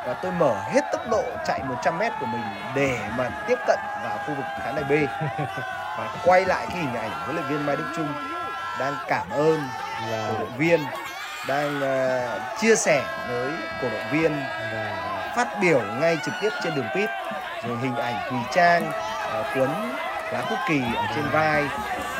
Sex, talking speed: male, 185 wpm